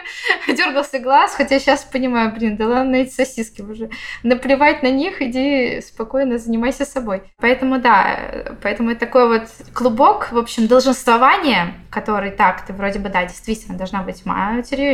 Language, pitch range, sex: Russian, 200-260 Hz, female